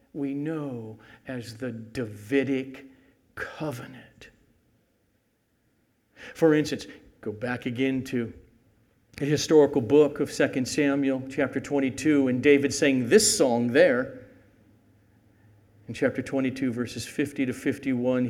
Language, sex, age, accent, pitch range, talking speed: English, male, 50-69, American, 120-160 Hz, 110 wpm